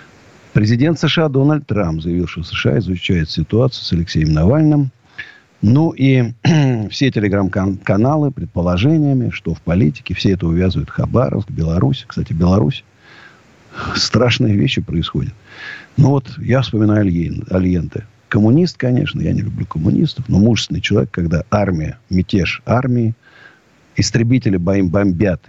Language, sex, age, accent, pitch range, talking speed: Russian, male, 50-69, native, 95-140 Hz, 120 wpm